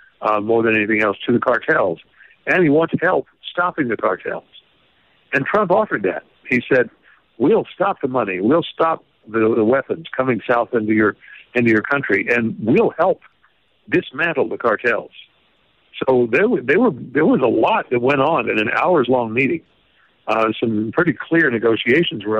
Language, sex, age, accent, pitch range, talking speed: English, male, 60-79, American, 110-125 Hz, 175 wpm